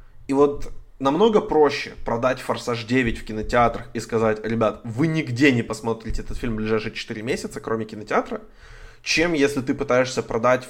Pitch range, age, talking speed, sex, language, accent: 110-130 Hz, 20-39, 150 wpm, male, Ukrainian, native